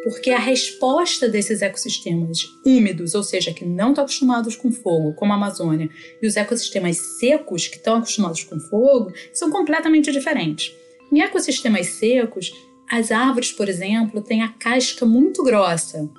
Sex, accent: female, Brazilian